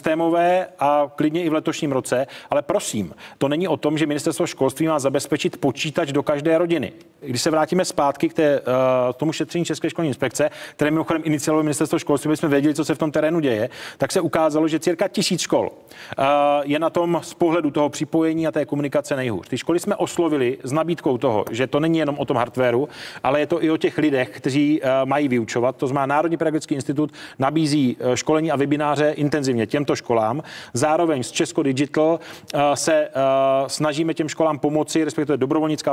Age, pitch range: 30-49, 140-160 Hz